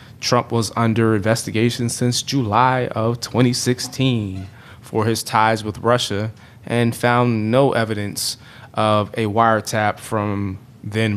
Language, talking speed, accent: English, 130 wpm, American